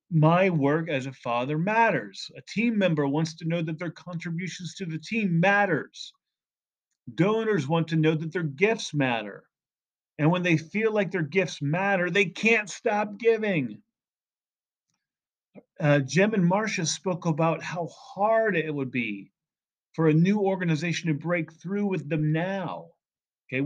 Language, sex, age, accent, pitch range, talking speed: English, male, 40-59, American, 145-190 Hz, 155 wpm